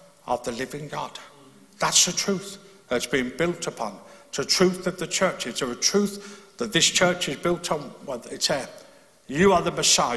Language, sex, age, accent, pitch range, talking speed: English, male, 60-79, British, 170-220 Hz, 195 wpm